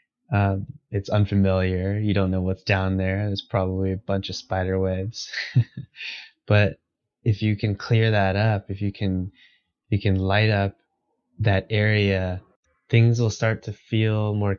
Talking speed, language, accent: 155 wpm, English, American